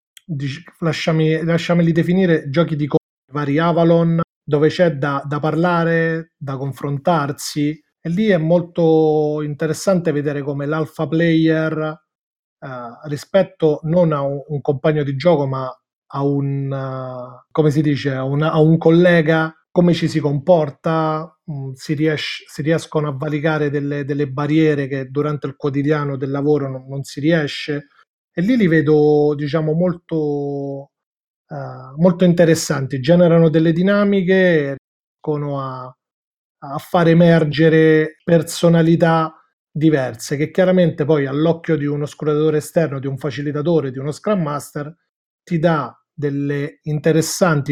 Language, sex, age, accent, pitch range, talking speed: Italian, male, 30-49, native, 145-165 Hz, 125 wpm